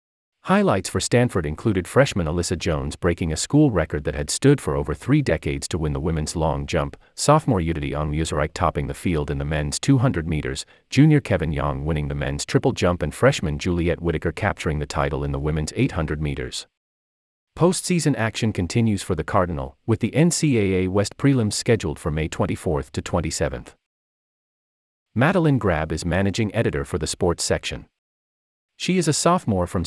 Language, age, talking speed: English, 40-59, 170 wpm